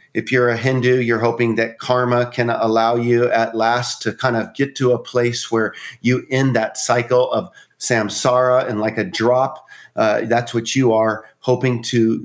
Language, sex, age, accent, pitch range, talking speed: English, male, 40-59, American, 115-130 Hz, 185 wpm